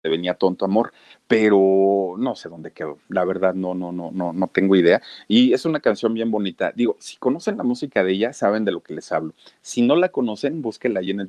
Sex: male